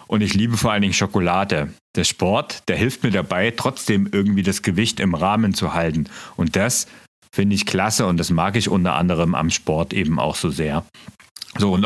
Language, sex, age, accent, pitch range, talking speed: German, male, 40-59, German, 95-115 Hz, 205 wpm